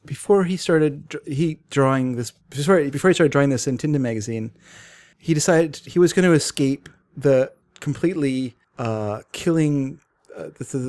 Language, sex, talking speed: English, male, 155 wpm